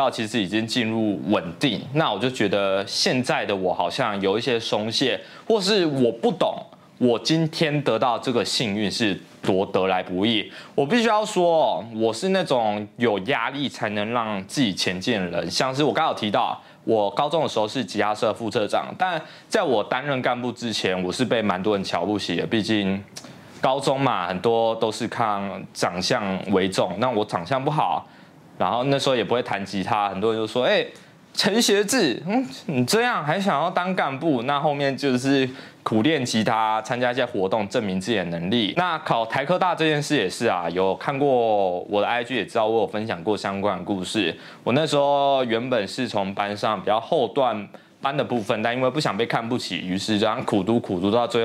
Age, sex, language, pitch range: 20-39, male, Chinese, 105-155 Hz